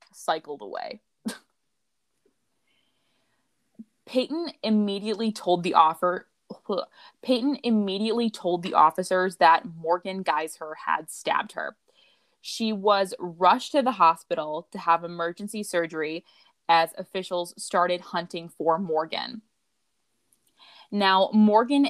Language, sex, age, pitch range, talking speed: English, female, 20-39, 175-250 Hz, 100 wpm